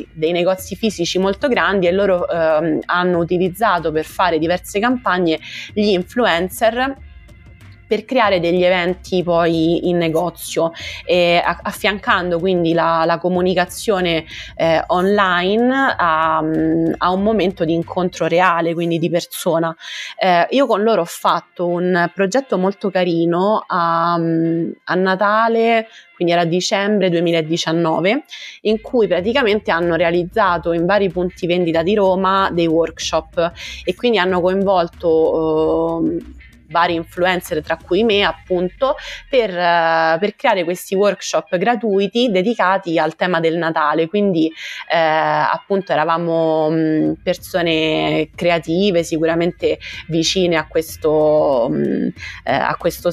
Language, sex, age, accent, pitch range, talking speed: Italian, female, 20-39, native, 165-195 Hz, 115 wpm